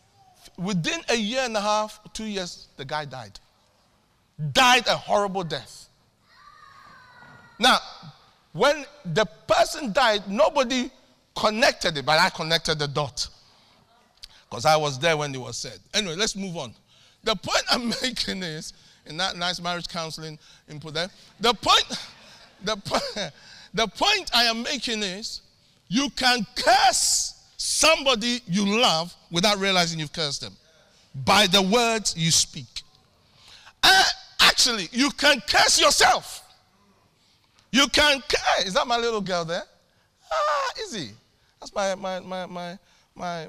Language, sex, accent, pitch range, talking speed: English, male, Nigerian, 165-260 Hz, 140 wpm